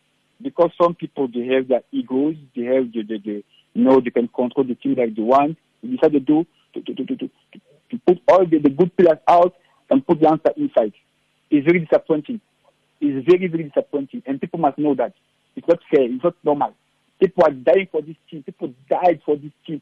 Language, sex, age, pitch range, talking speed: English, male, 50-69, 150-195 Hz, 220 wpm